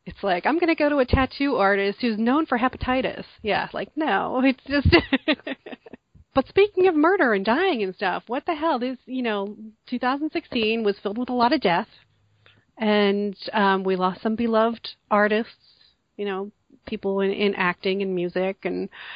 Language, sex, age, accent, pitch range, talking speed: English, female, 30-49, American, 170-220 Hz, 180 wpm